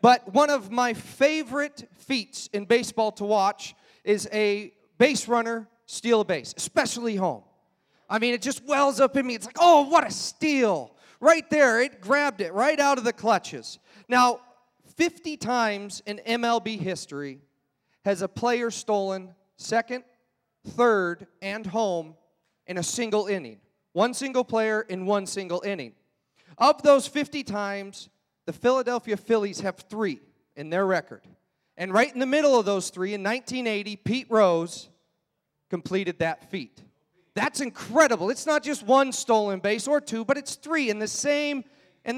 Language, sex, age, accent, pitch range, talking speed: English, male, 30-49, American, 200-265 Hz, 160 wpm